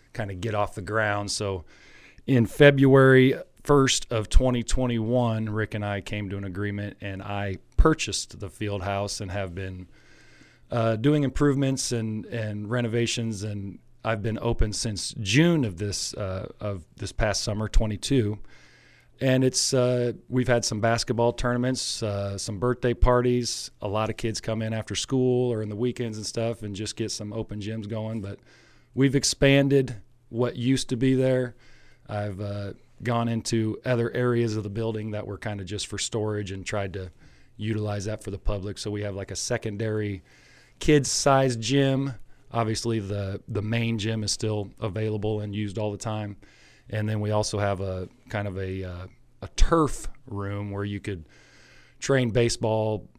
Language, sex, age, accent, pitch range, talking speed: English, male, 40-59, American, 100-120 Hz, 175 wpm